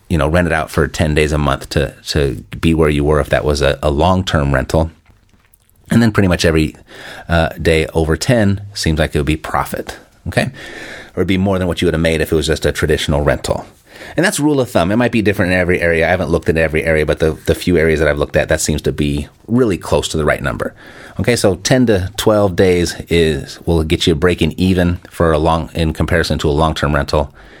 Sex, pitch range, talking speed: male, 80-105 Hz, 250 wpm